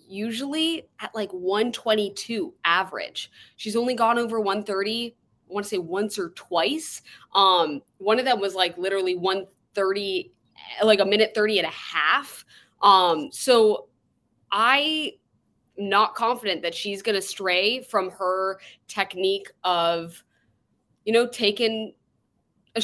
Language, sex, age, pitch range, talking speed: English, female, 20-39, 195-235 Hz, 130 wpm